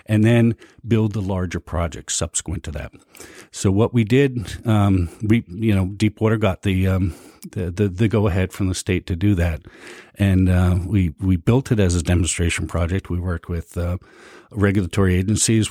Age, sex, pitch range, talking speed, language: 50-69, male, 90-110 Hz, 180 wpm, English